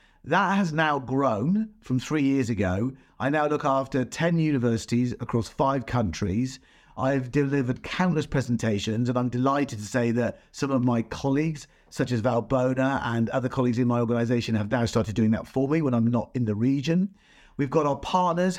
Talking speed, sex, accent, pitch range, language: 185 wpm, male, British, 115-140 Hz, English